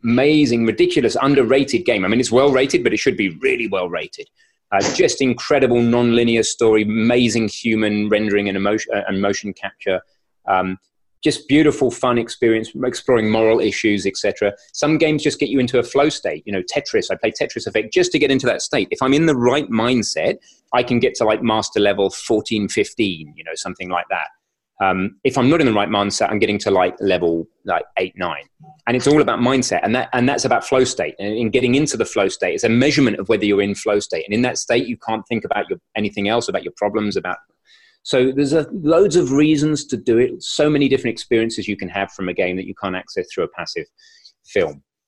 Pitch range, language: 105-150 Hz, English